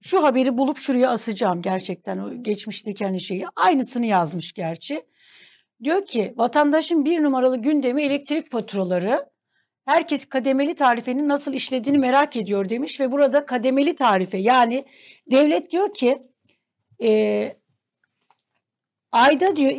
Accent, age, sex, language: native, 60-79, female, Turkish